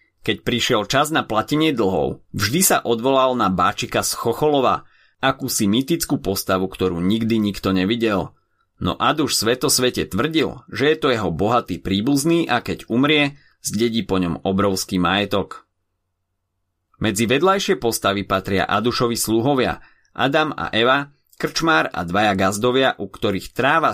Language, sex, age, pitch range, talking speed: Slovak, male, 30-49, 95-130 Hz, 135 wpm